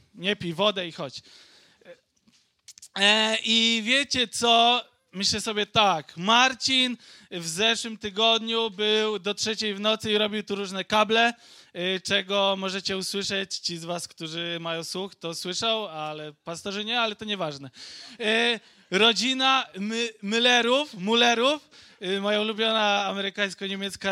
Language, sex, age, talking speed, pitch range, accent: Polish, male, 20-39, 120 wpm, 190-230 Hz, native